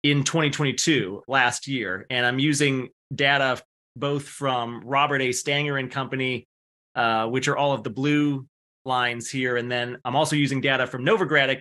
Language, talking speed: English, 165 wpm